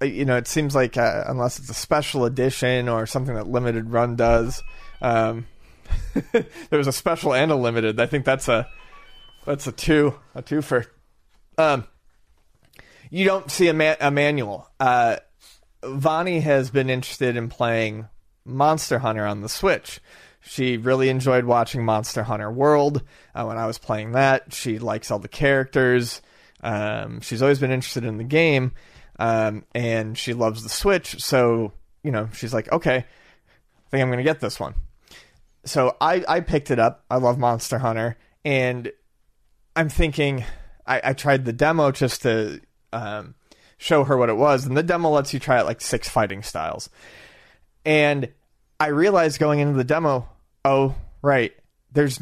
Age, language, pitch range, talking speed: 30-49, English, 115-145 Hz, 170 wpm